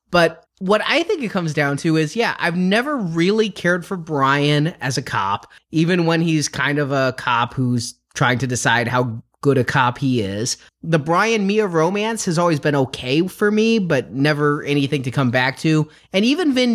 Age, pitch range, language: 20-39, 145-215 Hz, English